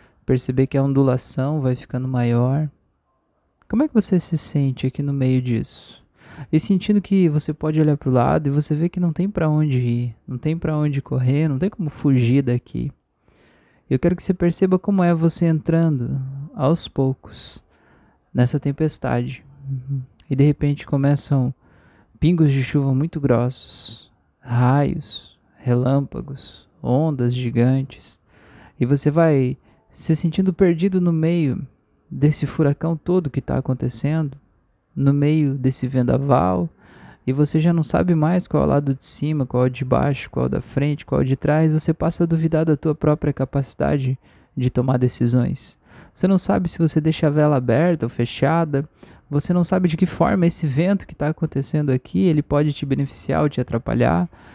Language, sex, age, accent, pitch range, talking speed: Portuguese, male, 20-39, Brazilian, 130-160 Hz, 175 wpm